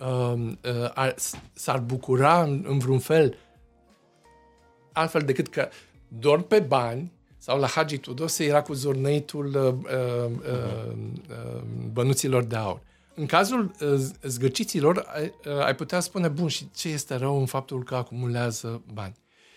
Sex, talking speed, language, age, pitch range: male, 140 wpm, Romanian, 50-69, 125-170 Hz